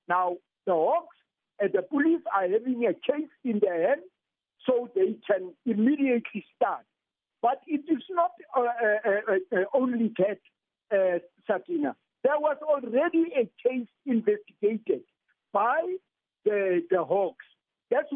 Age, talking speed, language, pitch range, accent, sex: 50-69, 135 wpm, English, 200-300 Hz, South African, male